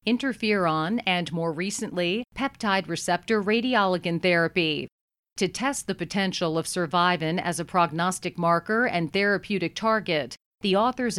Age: 40-59